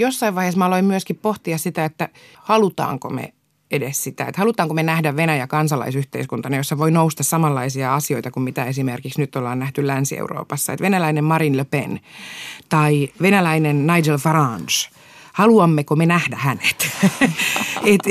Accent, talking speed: native, 145 wpm